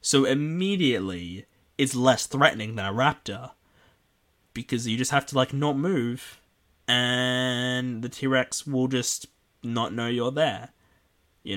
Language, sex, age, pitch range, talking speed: English, male, 10-29, 100-130 Hz, 135 wpm